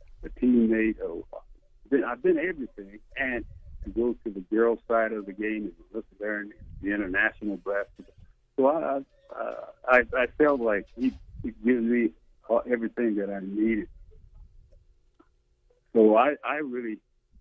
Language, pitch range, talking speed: English, 100-130 Hz, 140 wpm